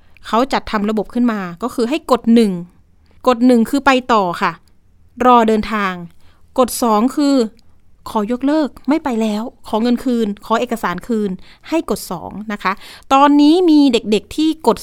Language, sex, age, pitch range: Thai, female, 30-49, 200-260 Hz